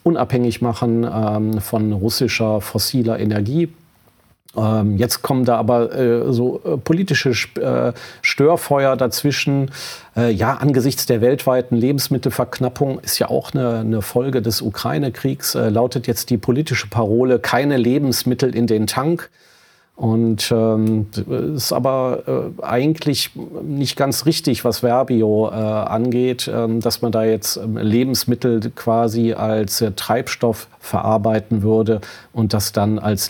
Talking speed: 120 wpm